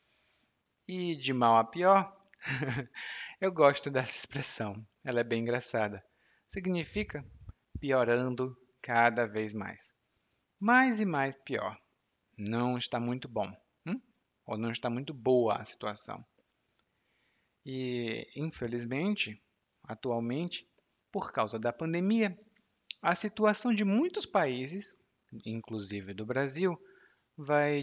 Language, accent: Portuguese, Brazilian